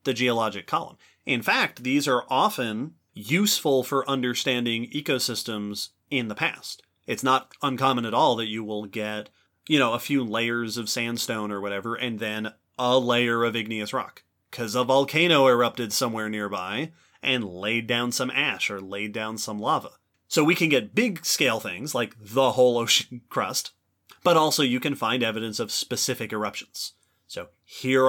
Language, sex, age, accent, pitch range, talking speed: English, male, 30-49, American, 105-130 Hz, 170 wpm